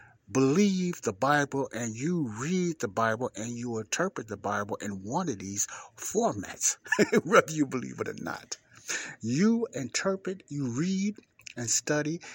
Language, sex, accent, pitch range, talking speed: English, male, American, 110-130 Hz, 145 wpm